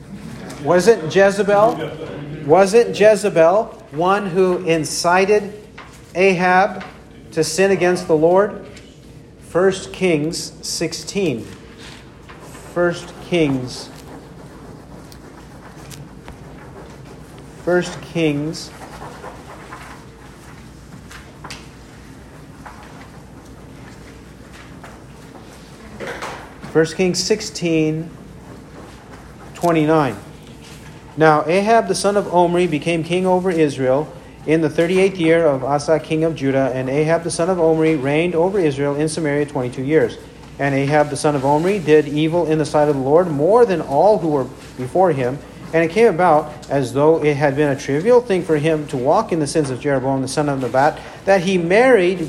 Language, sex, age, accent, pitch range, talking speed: English, male, 50-69, American, 150-180 Hz, 120 wpm